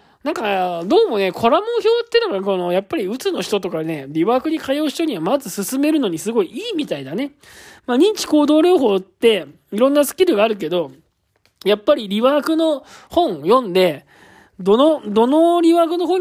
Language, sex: Japanese, male